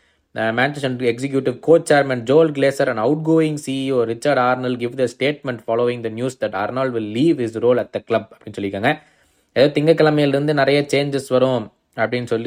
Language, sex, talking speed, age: Tamil, male, 195 wpm, 20-39